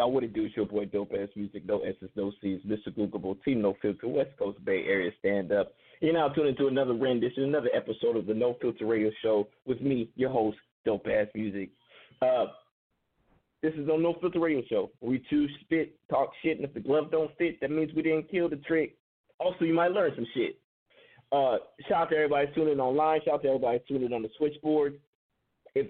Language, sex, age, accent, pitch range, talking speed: English, male, 30-49, American, 115-155 Hz, 220 wpm